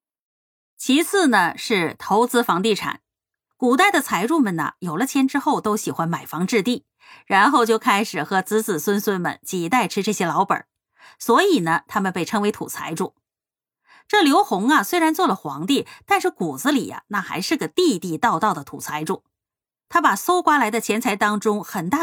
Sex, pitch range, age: female, 190-290 Hz, 30-49